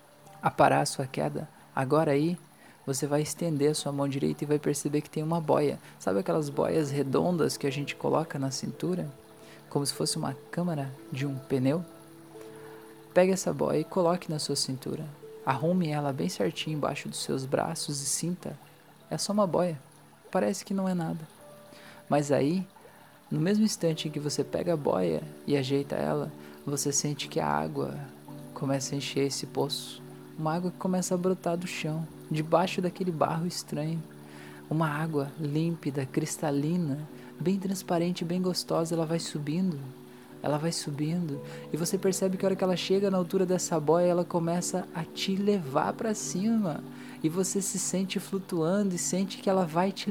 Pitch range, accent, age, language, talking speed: 140-180 Hz, Brazilian, 20-39, Portuguese, 175 wpm